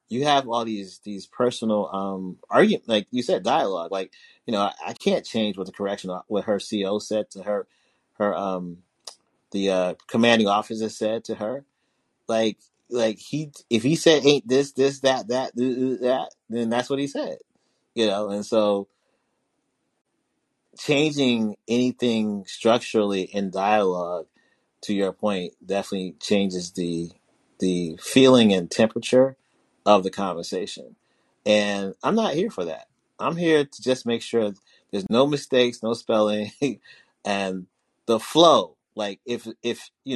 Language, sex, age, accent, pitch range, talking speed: English, male, 30-49, American, 95-120 Hz, 150 wpm